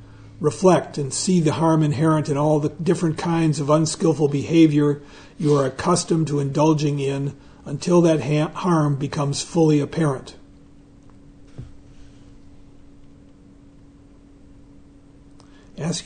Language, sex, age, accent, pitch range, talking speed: English, male, 50-69, American, 135-155 Hz, 100 wpm